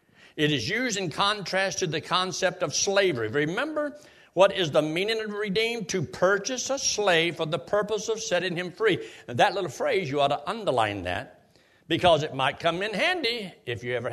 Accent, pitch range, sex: American, 155-215 Hz, male